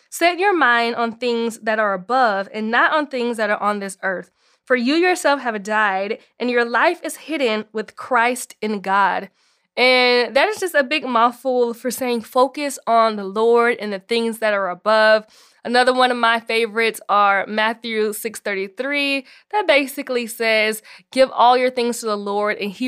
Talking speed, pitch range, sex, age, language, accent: 185 wpm, 215-270 Hz, female, 20-39, English, American